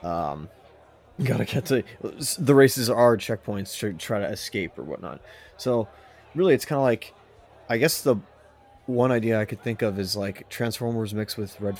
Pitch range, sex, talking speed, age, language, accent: 95-115 Hz, male, 180 wpm, 20-39, English, American